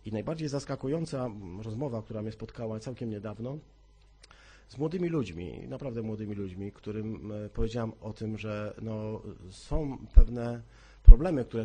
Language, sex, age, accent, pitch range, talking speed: Polish, male, 40-59, native, 105-130 Hz, 130 wpm